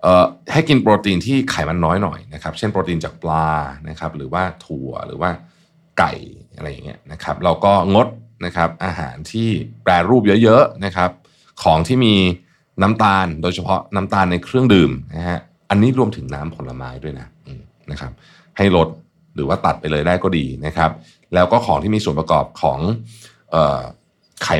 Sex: male